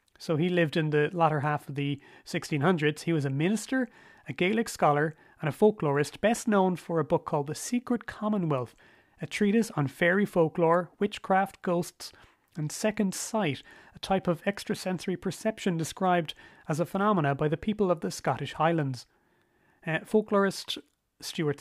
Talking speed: 160 wpm